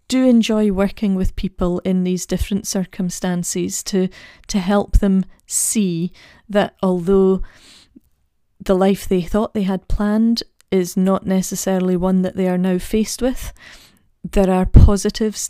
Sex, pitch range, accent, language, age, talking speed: female, 180-205 Hz, British, English, 30-49, 135 wpm